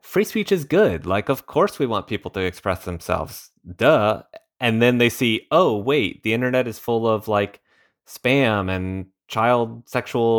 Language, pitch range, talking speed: English, 105-140 Hz, 175 wpm